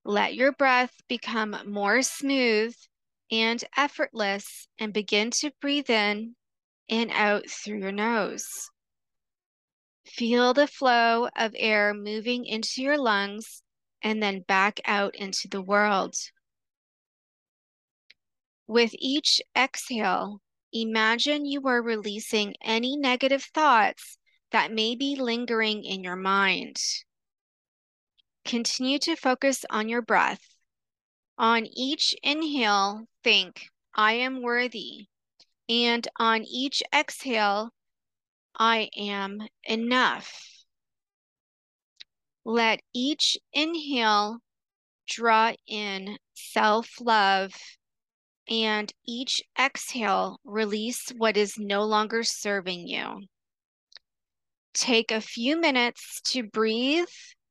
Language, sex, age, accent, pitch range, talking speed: English, female, 30-49, American, 210-255 Hz, 95 wpm